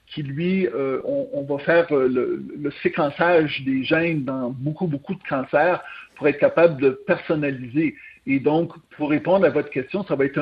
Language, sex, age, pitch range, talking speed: French, male, 50-69, 140-175 Hz, 185 wpm